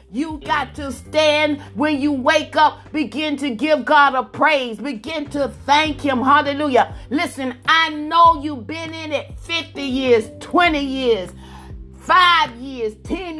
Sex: female